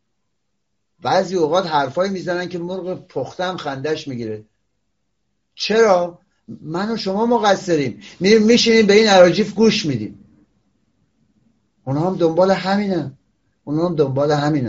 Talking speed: 120 wpm